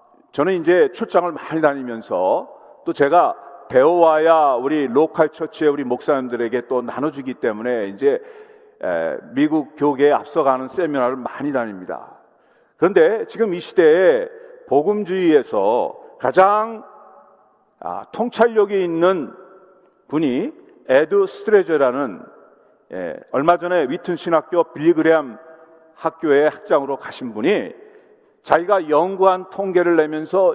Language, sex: Korean, male